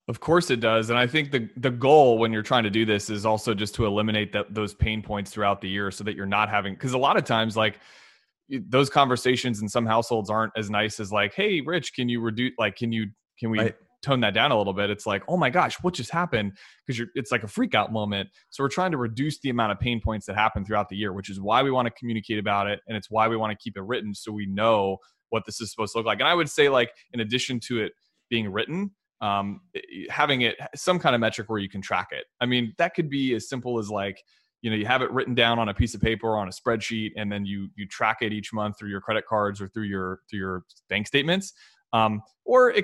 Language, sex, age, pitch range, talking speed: English, male, 20-39, 105-125 Hz, 270 wpm